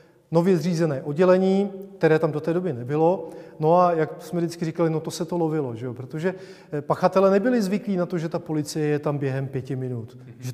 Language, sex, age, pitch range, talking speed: Czech, male, 30-49, 155-180 Hz, 210 wpm